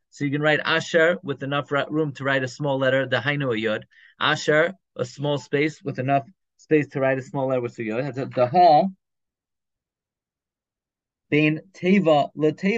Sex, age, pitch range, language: male, 30-49, 135-165 Hz, English